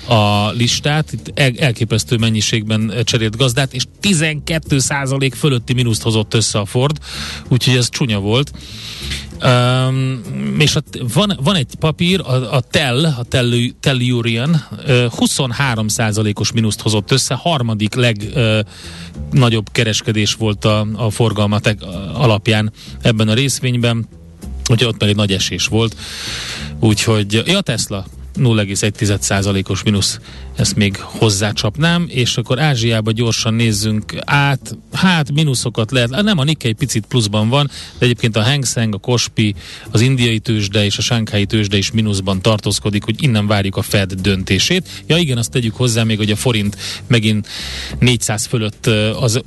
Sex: male